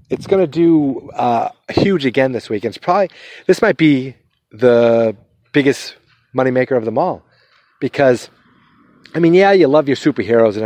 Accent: American